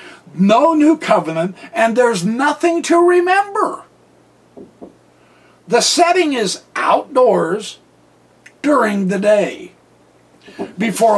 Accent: American